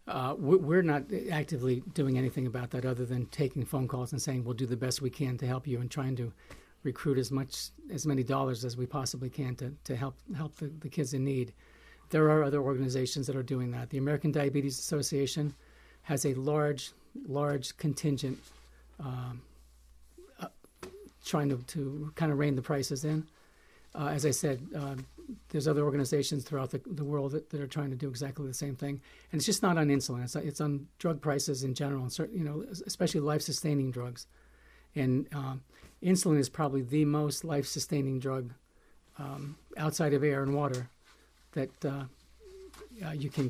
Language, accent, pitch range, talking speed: English, American, 130-150 Hz, 190 wpm